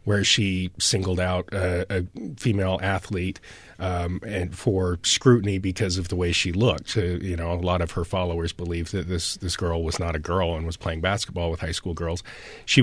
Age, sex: 30-49, male